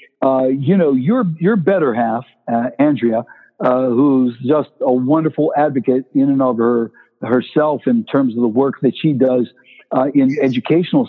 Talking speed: 170 wpm